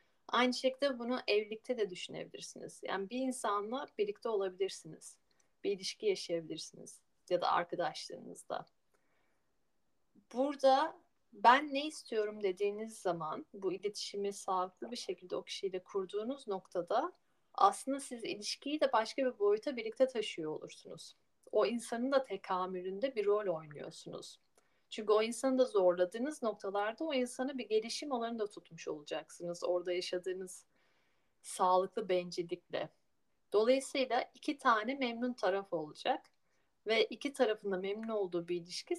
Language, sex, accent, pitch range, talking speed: Turkish, female, native, 195-260 Hz, 120 wpm